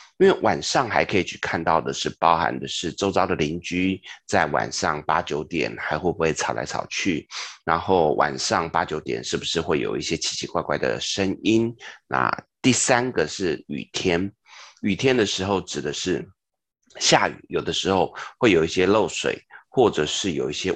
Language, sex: Chinese, male